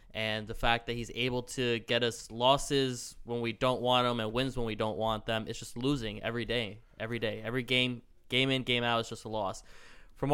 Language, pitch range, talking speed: English, 110-130 Hz, 230 wpm